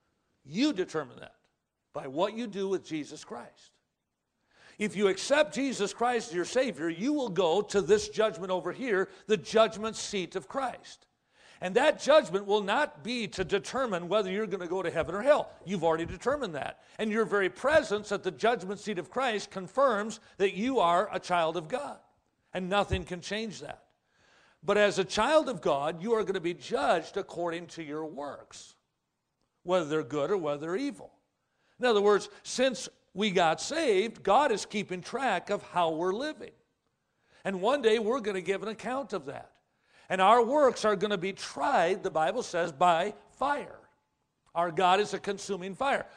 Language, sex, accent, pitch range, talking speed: English, male, American, 180-225 Hz, 185 wpm